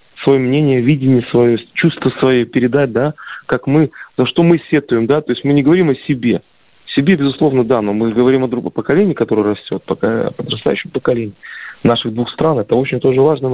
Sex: male